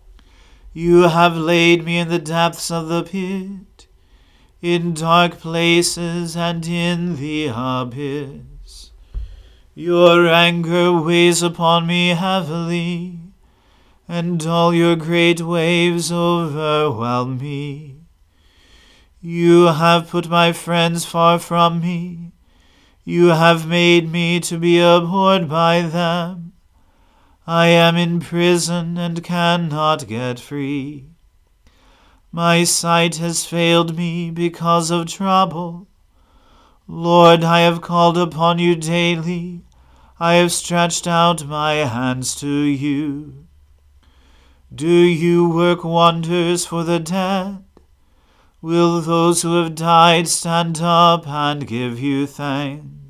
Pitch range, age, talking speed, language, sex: 145-170 Hz, 40-59, 110 wpm, English, male